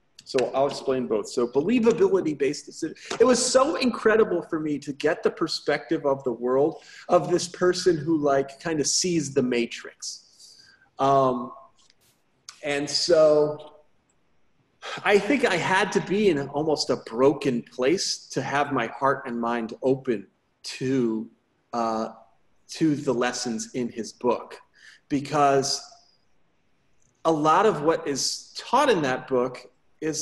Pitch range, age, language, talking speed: 140-200 Hz, 30-49, English, 140 wpm